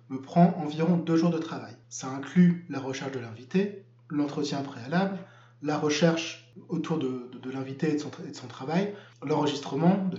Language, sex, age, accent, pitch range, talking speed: French, male, 20-39, French, 135-175 Hz, 185 wpm